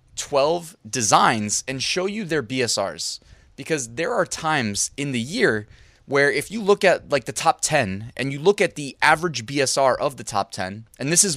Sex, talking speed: male, 195 wpm